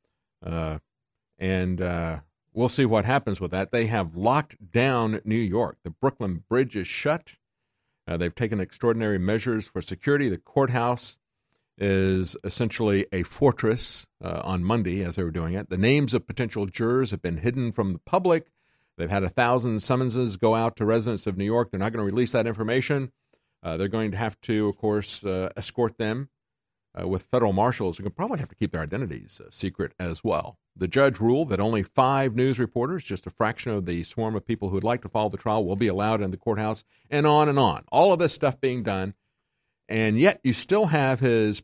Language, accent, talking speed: English, American, 205 wpm